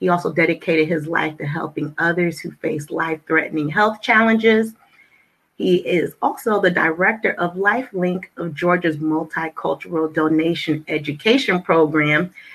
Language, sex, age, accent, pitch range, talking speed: English, female, 30-49, American, 155-195 Hz, 125 wpm